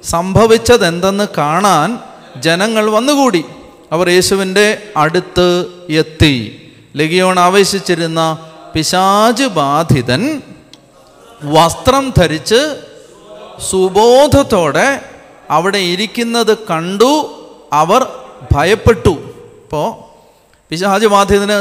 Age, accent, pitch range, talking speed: 30-49, native, 160-210 Hz, 60 wpm